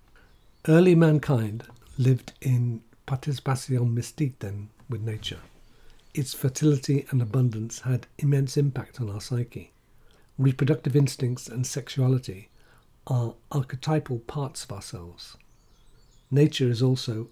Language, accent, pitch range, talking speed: English, British, 115-140 Hz, 105 wpm